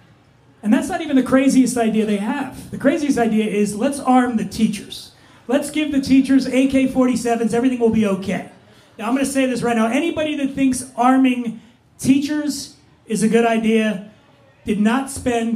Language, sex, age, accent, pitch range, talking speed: English, male, 30-49, American, 225-265 Hz, 175 wpm